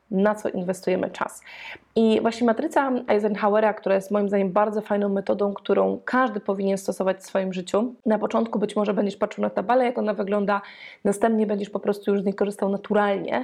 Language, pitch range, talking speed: Polish, 195-225 Hz, 190 wpm